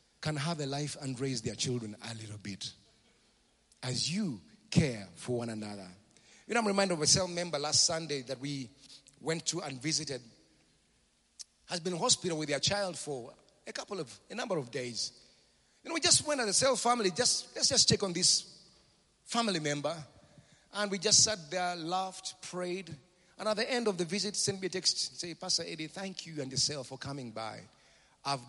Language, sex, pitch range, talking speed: English, male, 125-190 Hz, 200 wpm